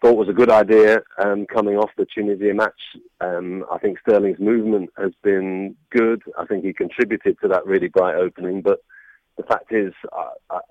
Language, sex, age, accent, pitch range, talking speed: English, male, 40-59, British, 95-110 Hz, 185 wpm